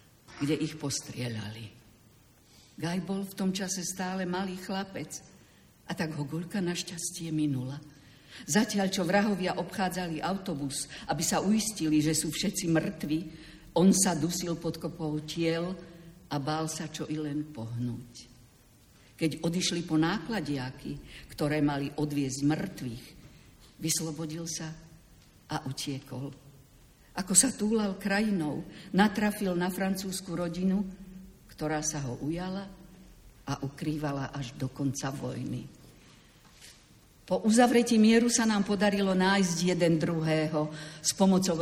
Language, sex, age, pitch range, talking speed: Slovak, female, 50-69, 140-185 Hz, 120 wpm